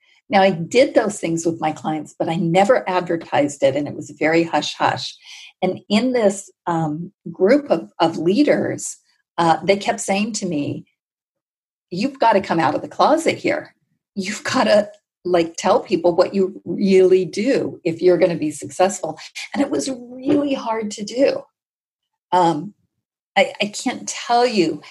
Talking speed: 170 wpm